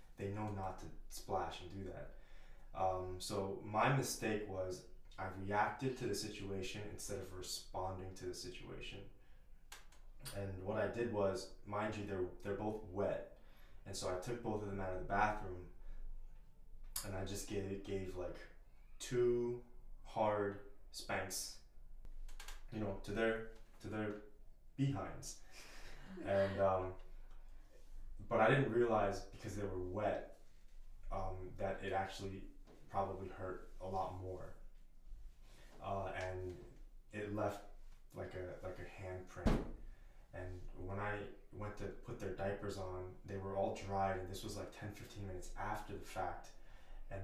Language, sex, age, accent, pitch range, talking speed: English, male, 20-39, American, 95-105 Hz, 145 wpm